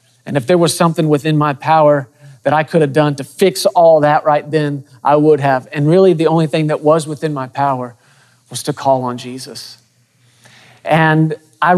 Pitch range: 135-170 Hz